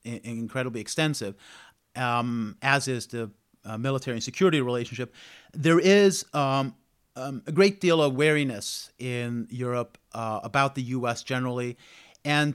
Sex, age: male, 30-49